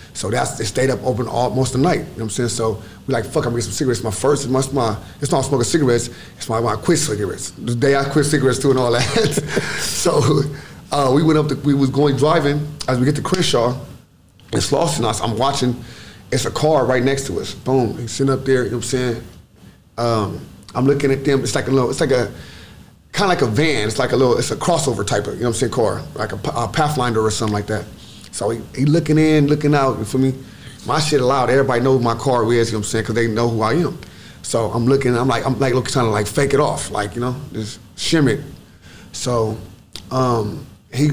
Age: 30-49